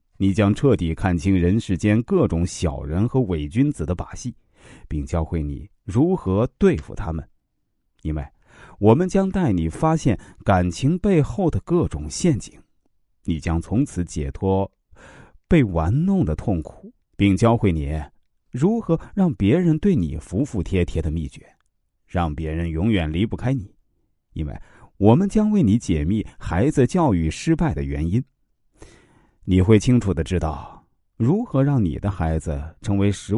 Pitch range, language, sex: 80-125 Hz, Chinese, male